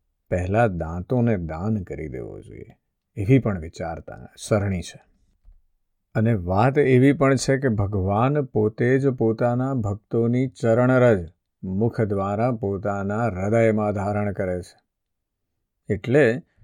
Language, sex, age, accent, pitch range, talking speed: Gujarati, male, 50-69, native, 95-120 Hz, 75 wpm